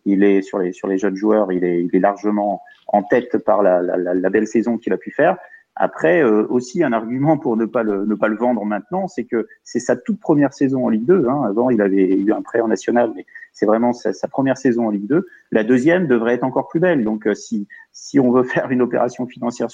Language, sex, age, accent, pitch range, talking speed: French, male, 30-49, French, 110-140 Hz, 260 wpm